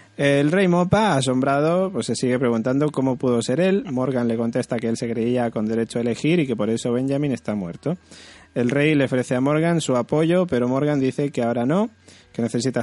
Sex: male